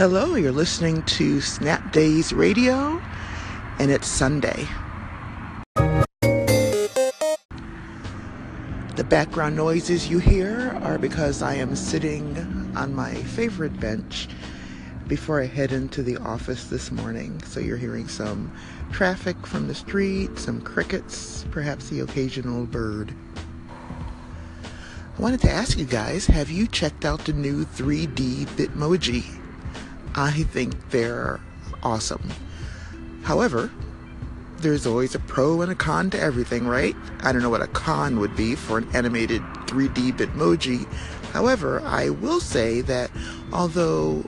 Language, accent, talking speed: English, American, 125 wpm